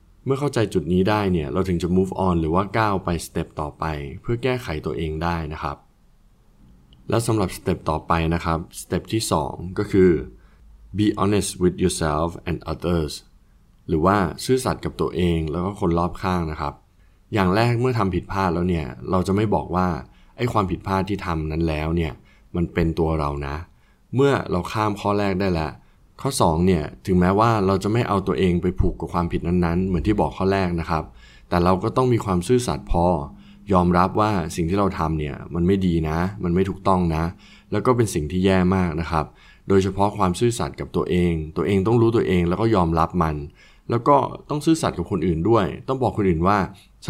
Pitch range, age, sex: 80-100 Hz, 20-39, male